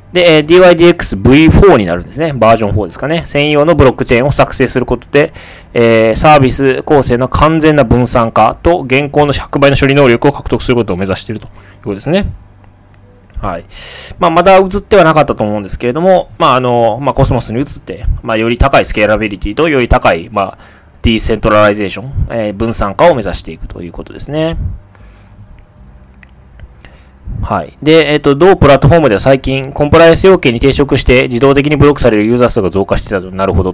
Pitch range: 100-140 Hz